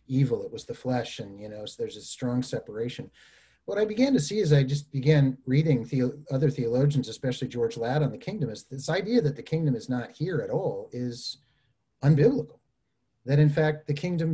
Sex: male